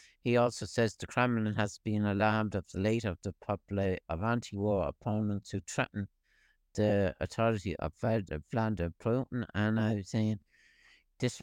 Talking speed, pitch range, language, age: 150 wpm, 100-115 Hz, English, 60-79